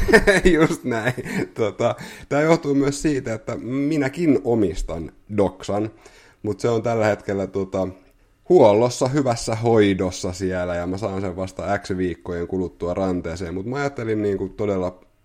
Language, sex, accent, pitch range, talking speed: Finnish, male, native, 90-115 Hz, 140 wpm